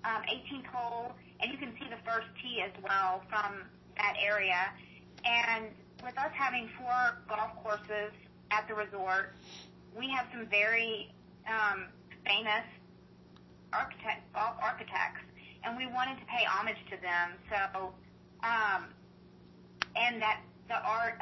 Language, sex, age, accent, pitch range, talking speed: English, female, 40-59, American, 185-225 Hz, 135 wpm